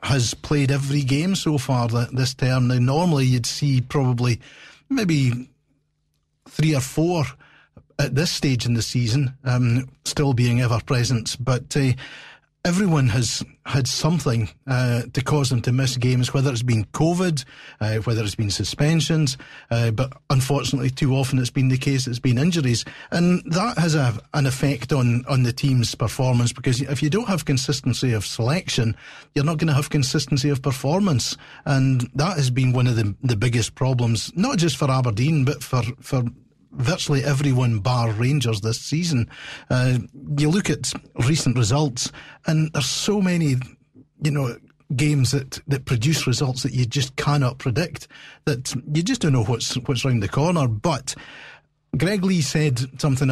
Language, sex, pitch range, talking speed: English, male, 120-145 Hz, 170 wpm